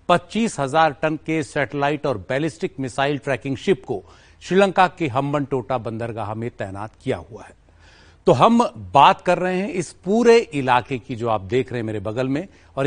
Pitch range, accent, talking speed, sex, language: 120-175 Hz, native, 180 wpm, male, Hindi